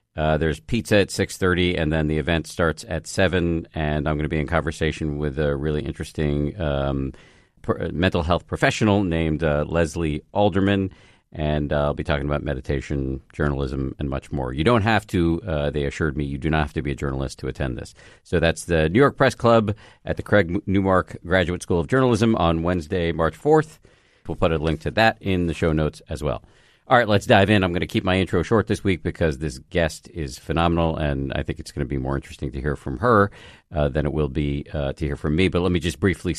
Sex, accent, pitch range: male, American, 75-100 Hz